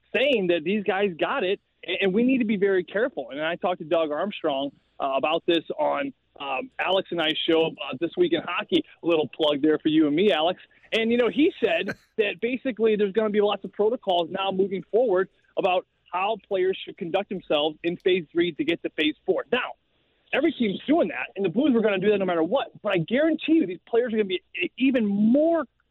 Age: 30-49